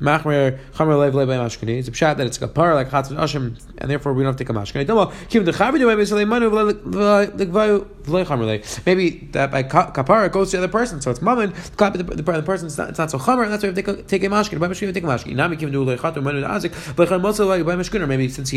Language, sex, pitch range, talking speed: English, male, 140-190 Hz, 165 wpm